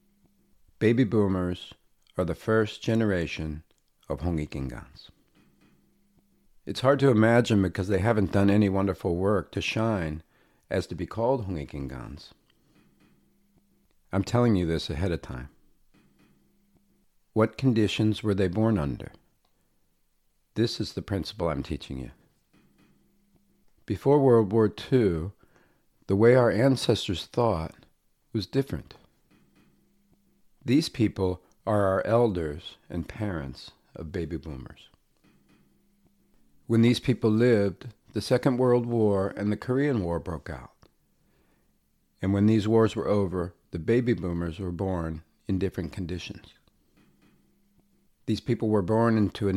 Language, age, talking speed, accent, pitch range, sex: English, 50-69, 120 wpm, American, 90-120 Hz, male